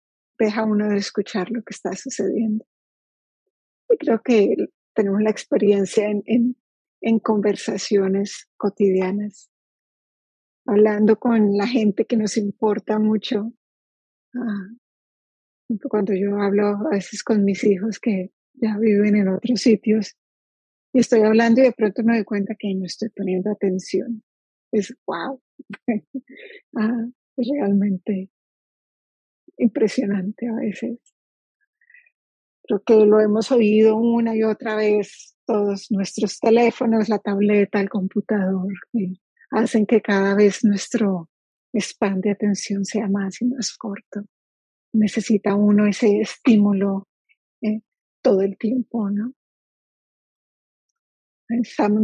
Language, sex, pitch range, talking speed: English, female, 205-230 Hz, 120 wpm